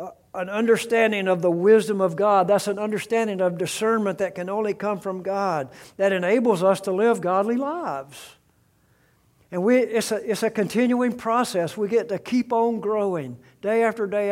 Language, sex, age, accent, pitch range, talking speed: English, male, 60-79, American, 145-200 Hz, 175 wpm